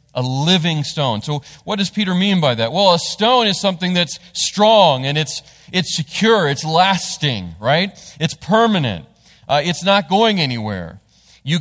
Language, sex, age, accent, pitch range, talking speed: English, male, 40-59, American, 140-175 Hz, 165 wpm